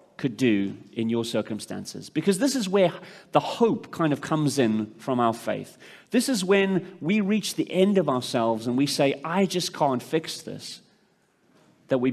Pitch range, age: 115-160 Hz, 30-49